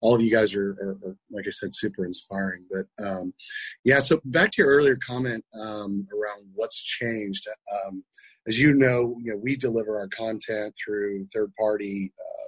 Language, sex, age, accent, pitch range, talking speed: English, male, 30-49, American, 100-125 Hz, 185 wpm